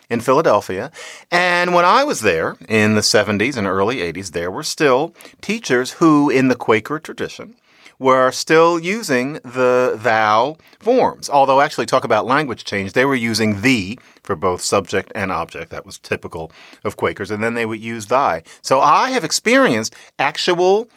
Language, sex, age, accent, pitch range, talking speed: English, male, 40-59, American, 115-165 Hz, 170 wpm